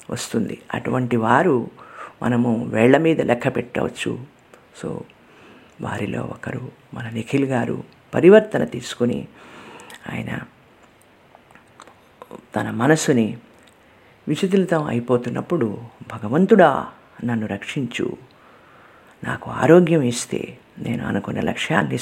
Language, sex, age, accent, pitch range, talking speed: Telugu, female, 50-69, native, 120-185 Hz, 80 wpm